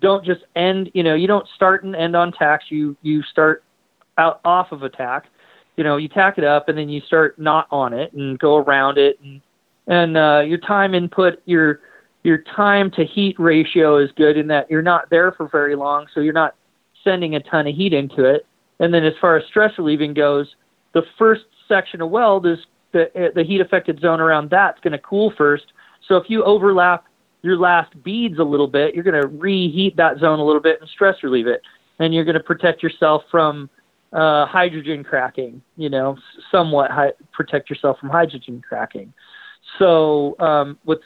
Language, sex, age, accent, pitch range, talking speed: English, male, 30-49, American, 150-190 Hz, 200 wpm